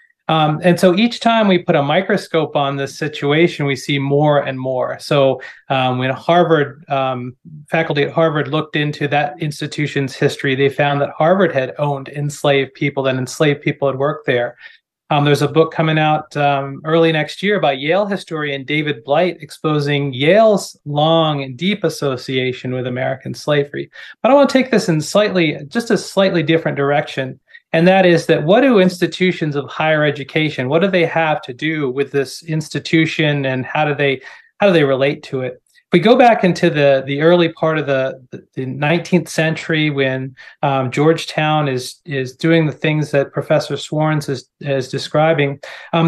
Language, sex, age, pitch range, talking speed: English, male, 30-49, 140-170 Hz, 180 wpm